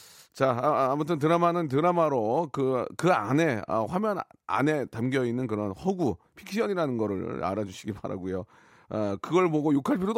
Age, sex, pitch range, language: 40-59, male, 115-160 Hz, Korean